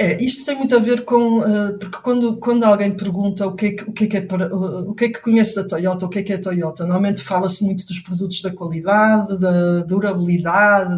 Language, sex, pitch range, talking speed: Portuguese, female, 185-235 Hz, 240 wpm